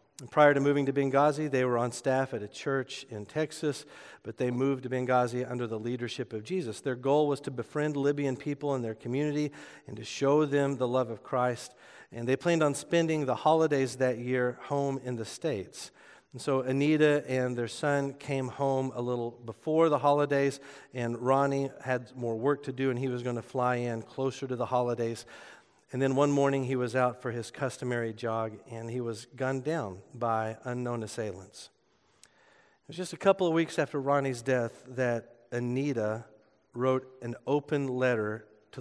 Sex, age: male, 50-69